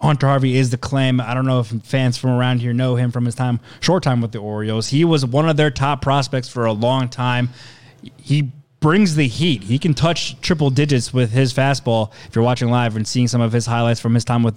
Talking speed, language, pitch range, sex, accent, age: 245 wpm, English, 120-135 Hz, male, American, 20-39